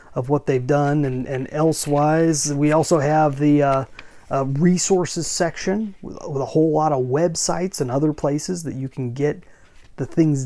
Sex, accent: male, American